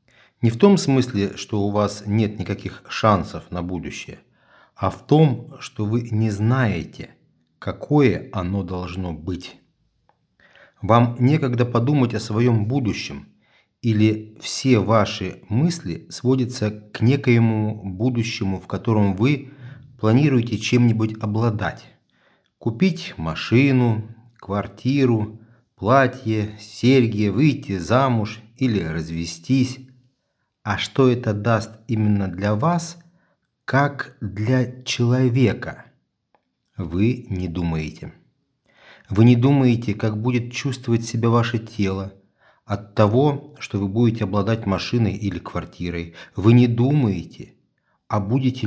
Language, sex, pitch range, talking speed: Russian, male, 100-125 Hz, 110 wpm